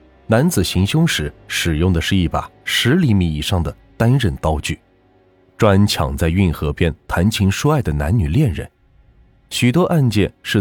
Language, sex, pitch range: Chinese, male, 80-115 Hz